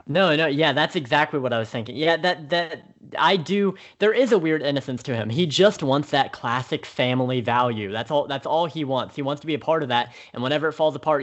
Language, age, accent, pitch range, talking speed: English, 10-29, American, 125-170 Hz, 250 wpm